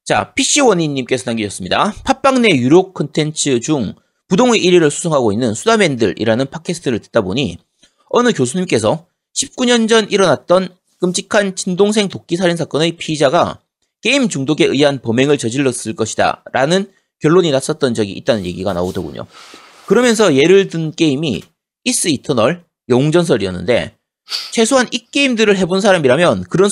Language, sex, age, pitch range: Korean, male, 30-49, 135-200 Hz